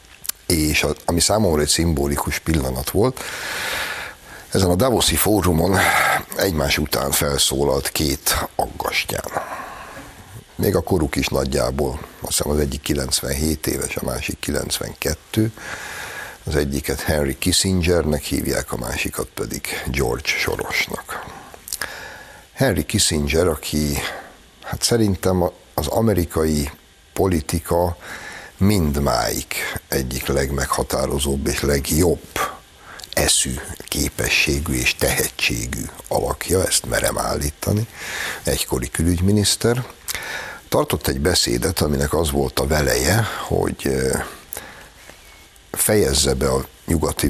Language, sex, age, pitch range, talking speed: Hungarian, male, 60-79, 70-90 Hz, 95 wpm